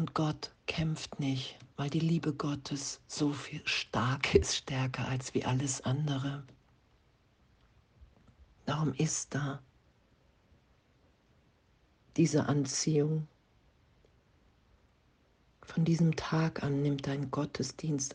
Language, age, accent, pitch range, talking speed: German, 50-69, German, 130-155 Hz, 95 wpm